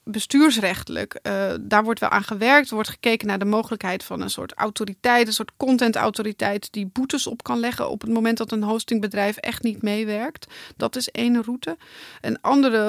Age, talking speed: 30-49, 185 wpm